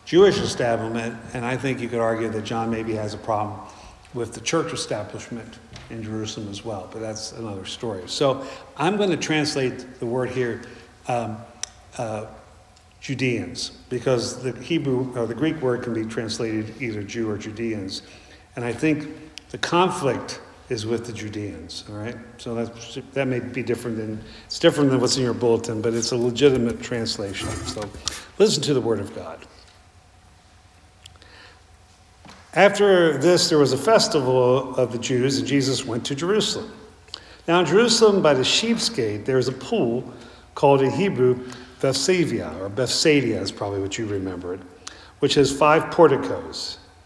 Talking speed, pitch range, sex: 165 wpm, 110-135 Hz, male